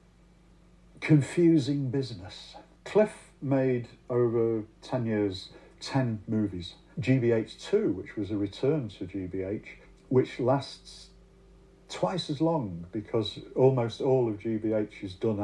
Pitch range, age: 100-125 Hz, 50-69